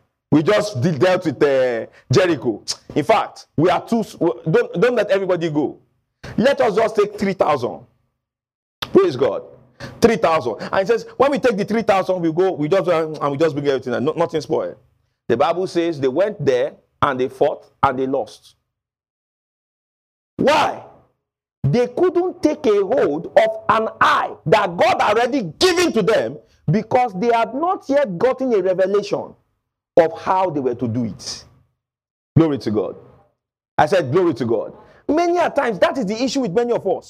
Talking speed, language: 180 wpm, English